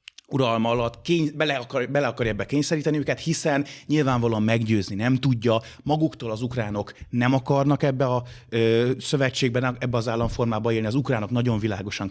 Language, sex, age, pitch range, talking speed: Hungarian, male, 30-49, 110-135 Hz, 160 wpm